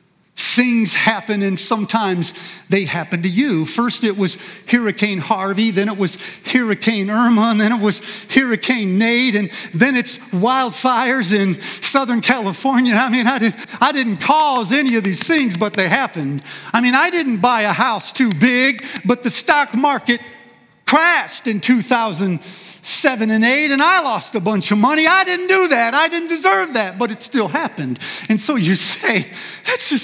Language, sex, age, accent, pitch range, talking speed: English, male, 40-59, American, 215-295 Hz, 180 wpm